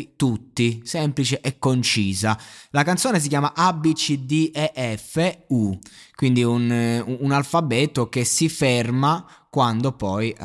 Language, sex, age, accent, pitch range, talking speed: Italian, male, 20-39, native, 105-140 Hz, 140 wpm